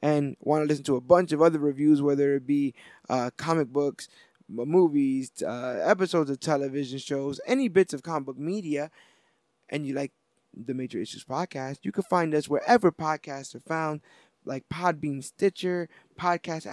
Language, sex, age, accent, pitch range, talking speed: English, male, 20-39, American, 140-180 Hz, 170 wpm